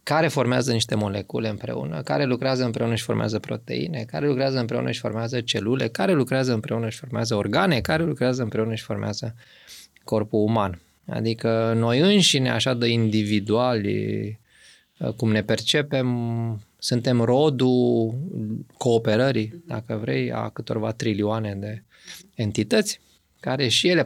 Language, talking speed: Romanian, 130 wpm